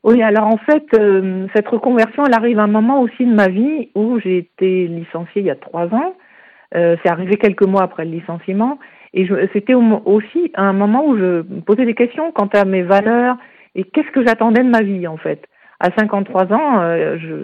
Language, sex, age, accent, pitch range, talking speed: French, female, 50-69, French, 175-235 Hz, 215 wpm